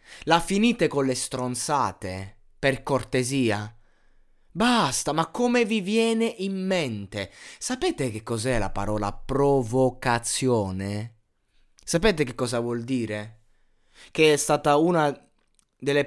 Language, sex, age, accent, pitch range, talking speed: Italian, male, 20-39, native, 115-155 Hz, 110 wpm